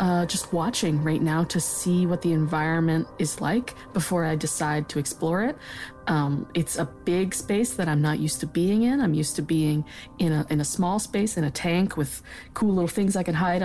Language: English